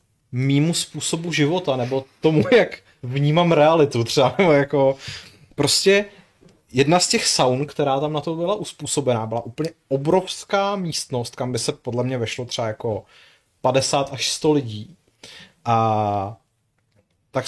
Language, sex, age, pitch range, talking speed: Czech, male, 30-49, 120-160 Hz, 135 wpm